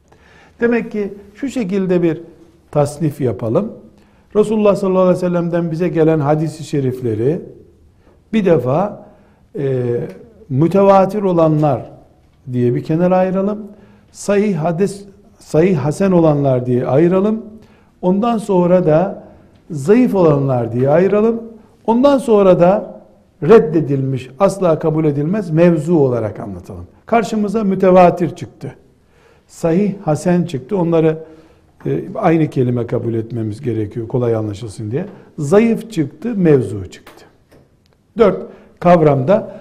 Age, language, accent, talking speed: 60-79, Turkish, native, 110 wpm